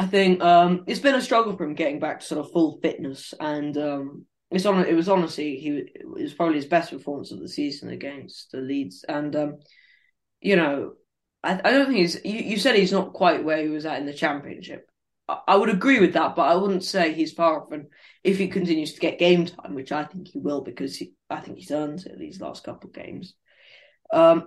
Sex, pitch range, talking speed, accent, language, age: female, 150-190 Hz, 240 wpm, British, English, 20-39